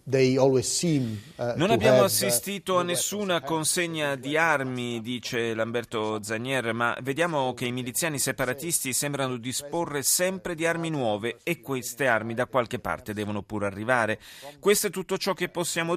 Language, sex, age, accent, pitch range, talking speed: Italian, male, 30-49, native, 115-150 Hz, 145 wpm